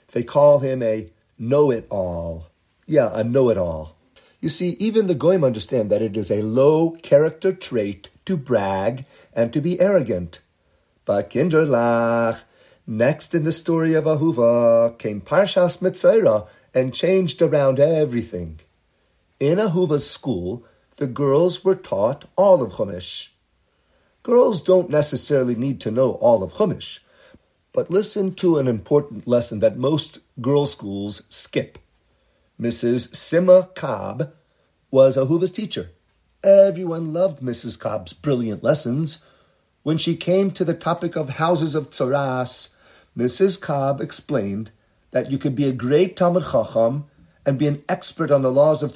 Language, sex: English, male